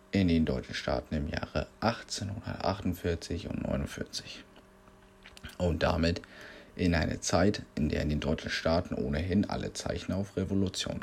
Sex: male